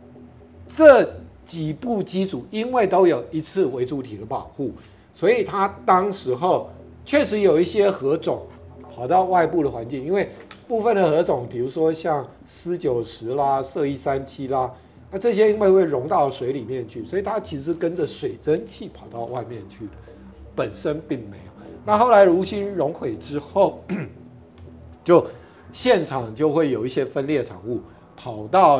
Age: 50-69